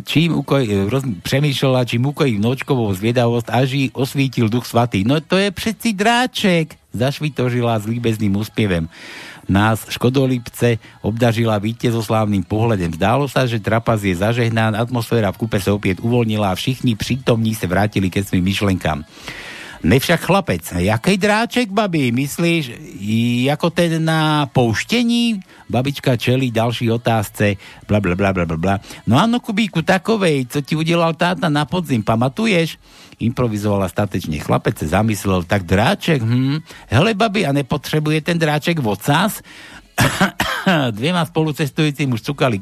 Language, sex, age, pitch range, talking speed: Slovak, male, 60-79, 110-160 Hz, 135 wpm